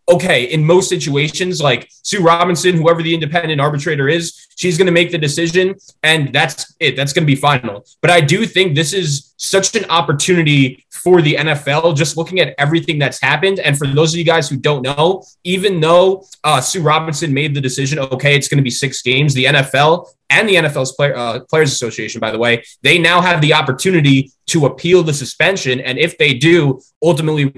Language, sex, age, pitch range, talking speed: English, male, 20-39, 140-175 Hz, 200 wpm